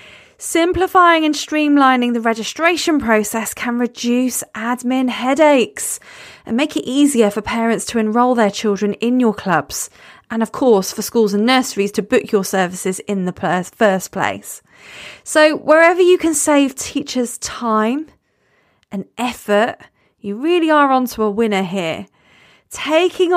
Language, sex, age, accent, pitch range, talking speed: English, female, 30-49, British, 210-275 Hz, 140 wpm